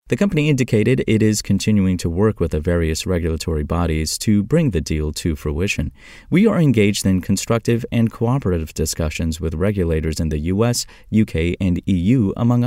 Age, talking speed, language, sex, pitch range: 30-49, 170 wpm, English, male, 85-115 Hz